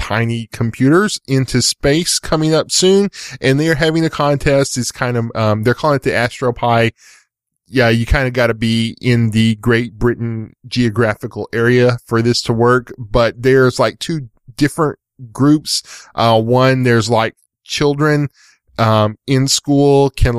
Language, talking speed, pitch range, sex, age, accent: English, 160 wpm, 110-130 Hz, male, 10-29, American